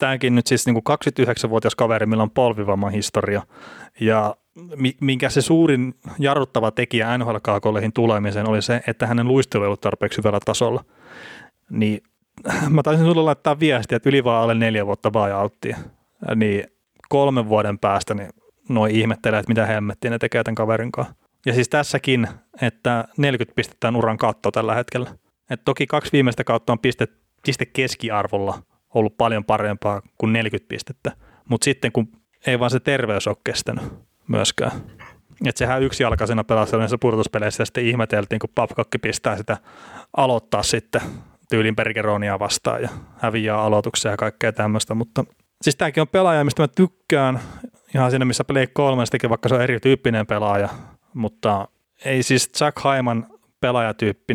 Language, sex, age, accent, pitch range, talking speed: Finnish, male, 30-49, native, 110-130 Hz, 150 wpm